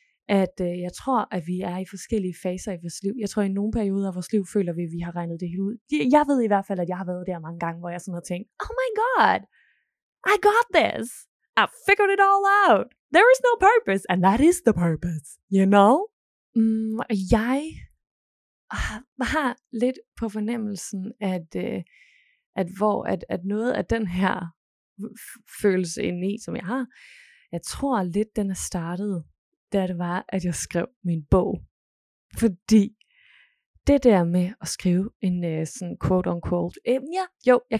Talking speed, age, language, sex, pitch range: 195 wpm, 20-39, Danish, female, 180-260 Hz